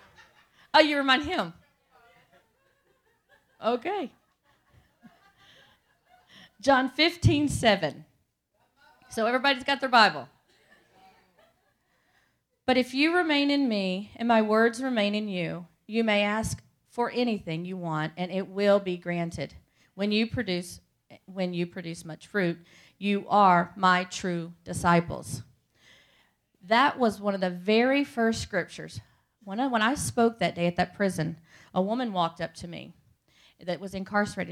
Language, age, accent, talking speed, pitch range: English, 40-59, American, 135 wpm, 170-225 Hz